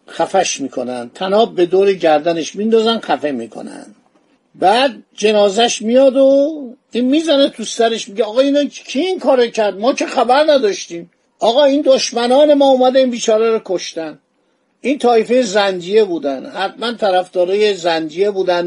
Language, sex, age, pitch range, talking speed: Persian, male, 50-69, 185-245 Hz, 140 wpm